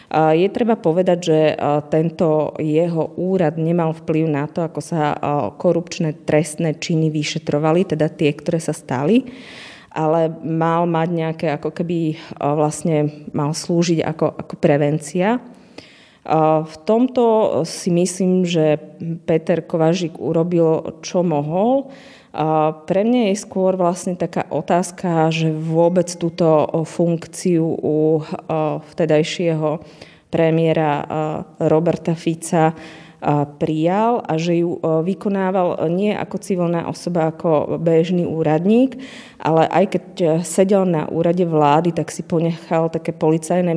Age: 30-49